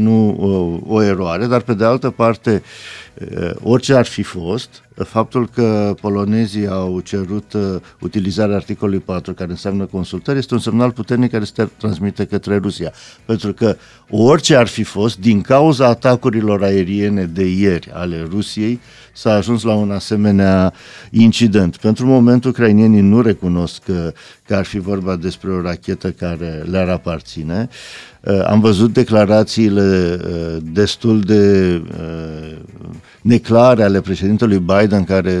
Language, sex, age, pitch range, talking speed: Romanian, male, 50-69, 90-115 Hz, 130 wpm